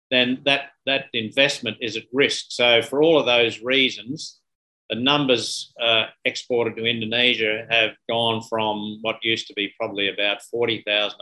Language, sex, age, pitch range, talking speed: English, male, 50-69, 110-130 Hz, 155 wpm